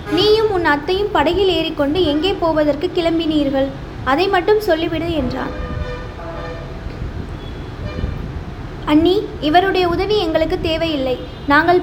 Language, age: Tamil, 20-39